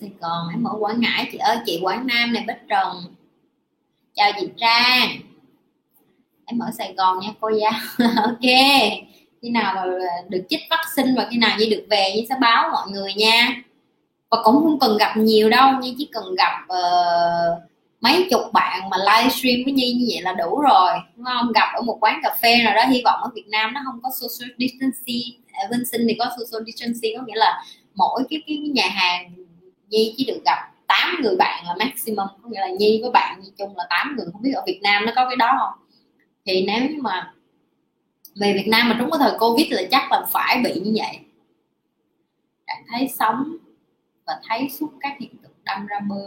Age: 20-39